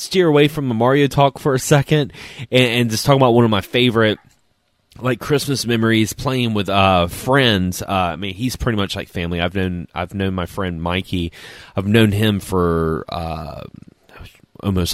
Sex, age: male, 20-39